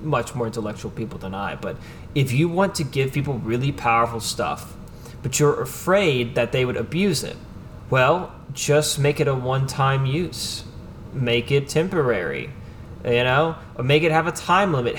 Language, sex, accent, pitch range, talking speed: English, male, American, 120-150 Hz, 170 wpm